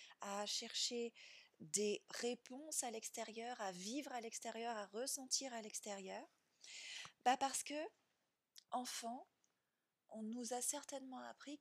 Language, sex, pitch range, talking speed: French, female, 185-235 Hz, 120 wpm